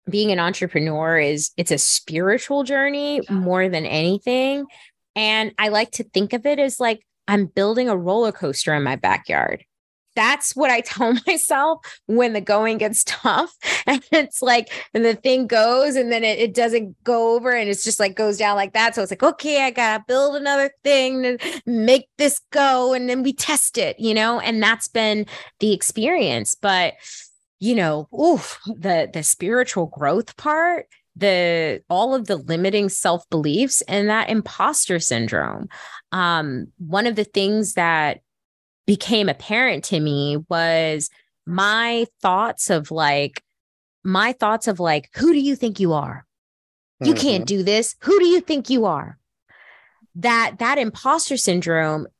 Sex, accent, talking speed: female, American, 165 wpm